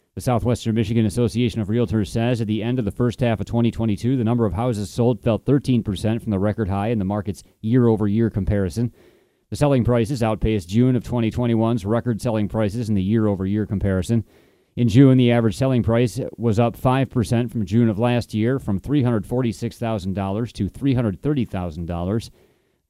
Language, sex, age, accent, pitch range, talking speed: English, male, 30-49, American, 105-125 Hz, 170 wpm